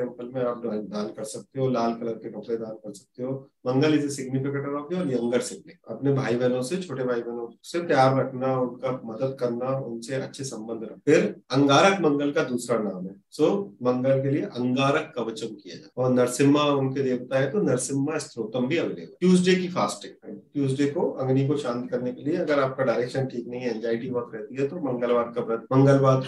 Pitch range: 125-155 Hz